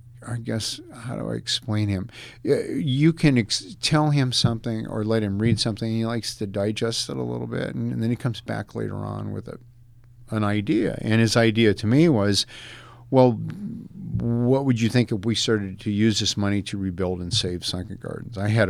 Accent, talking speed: American, 205 wpm